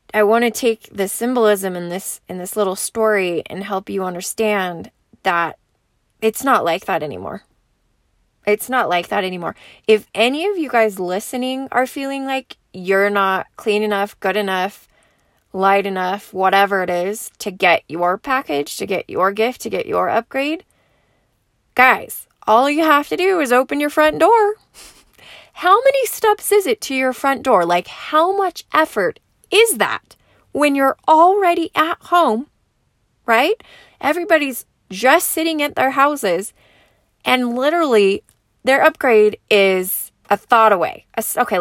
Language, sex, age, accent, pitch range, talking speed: English, female, 20-39, American, 195-285 Hz, 155 wpm